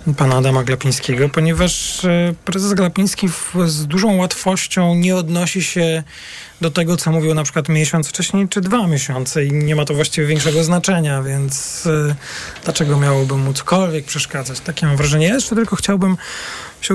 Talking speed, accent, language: 150 wpm, native, Polish